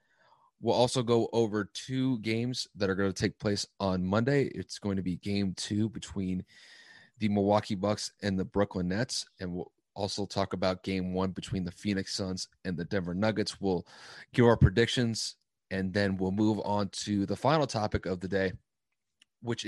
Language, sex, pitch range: English, male, 95-115 Hz